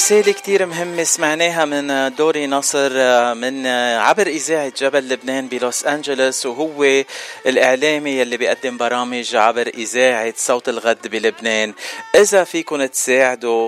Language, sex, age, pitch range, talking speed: Arabic, male, 40-59, 120-160 Hz, 120 wpm